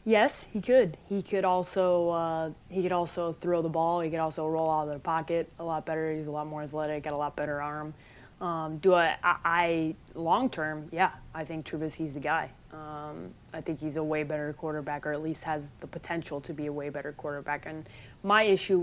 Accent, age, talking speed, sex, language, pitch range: American, 20-39, 225 wpm, female, English, 150-175 Hz